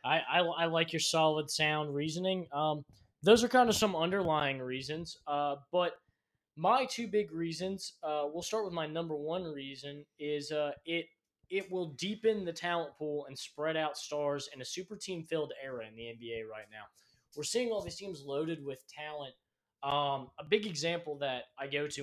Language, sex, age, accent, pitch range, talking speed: English, male, 20-39, American, 145-170 Hz, 190 wpm